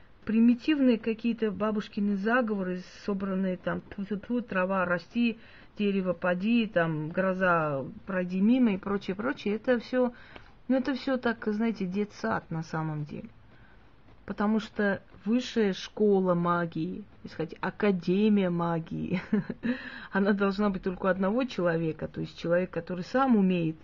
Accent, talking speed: native, 120 wpm